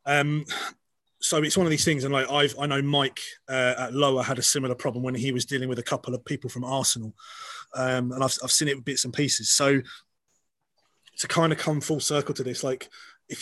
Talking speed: 235 wpm